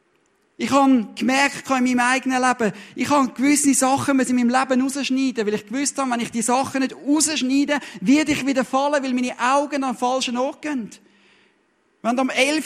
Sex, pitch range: male, 240-275 Hz